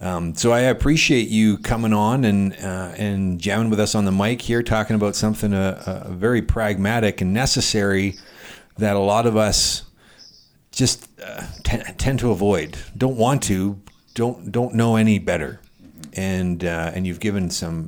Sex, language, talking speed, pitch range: male, English, 175 wpm, 85-105 Hz